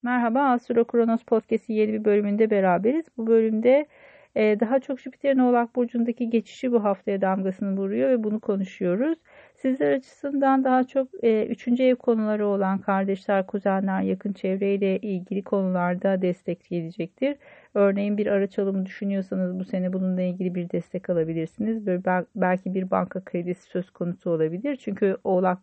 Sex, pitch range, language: female, 190-235 Hz, Turkish